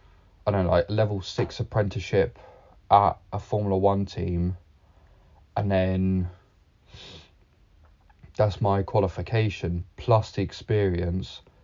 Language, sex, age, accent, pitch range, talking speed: English, male, 20-39, British, 90-100 Hz, 105 wpm